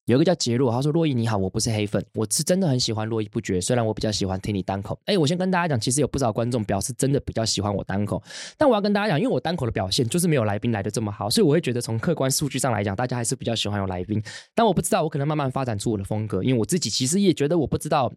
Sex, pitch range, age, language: male, 110-150 Hz, 20-39, Chinese